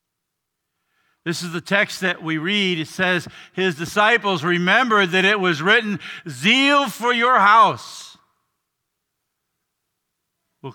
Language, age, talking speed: English, 50-69, 115 wpm